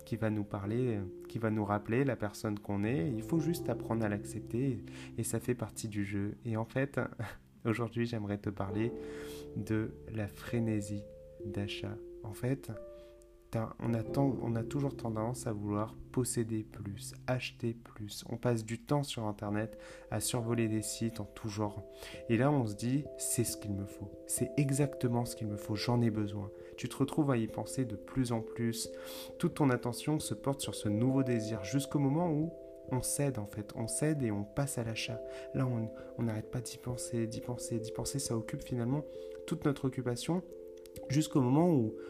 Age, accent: 30-49, French